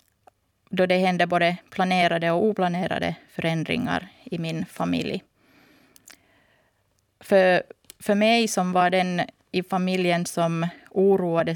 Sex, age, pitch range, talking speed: female, 30-49, 175-210 Hz, 110 wpm